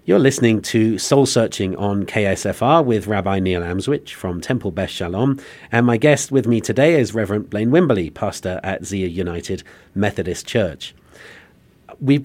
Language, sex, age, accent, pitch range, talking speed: English, male, 40-59, British, 105-135 Hz, 155 wpm